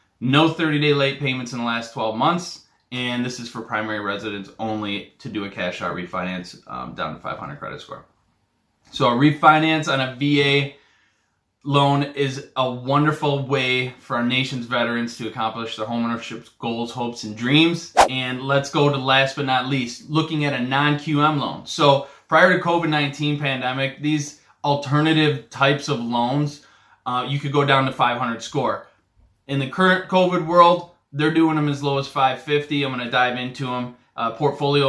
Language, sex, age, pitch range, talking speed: English, male, 20-39, 115-145 Hz, 180 wpm